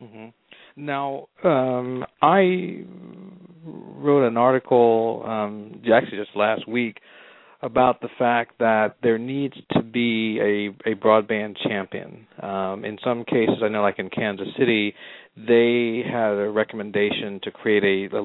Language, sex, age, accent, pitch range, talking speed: English, male, 40-59, American, 110-130 Hz, 140 wpm